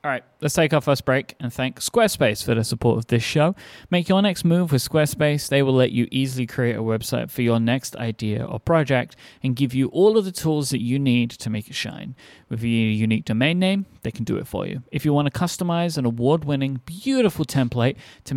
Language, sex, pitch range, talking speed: English, male, 120-155 Hz, 230 wpm